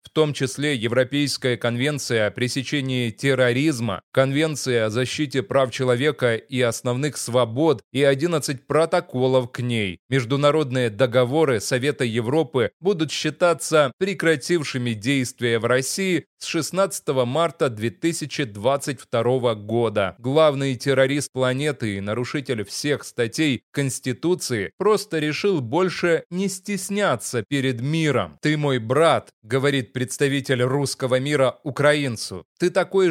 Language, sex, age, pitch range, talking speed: Russian, male, 20-39, 125-155 Hz, 110 wpm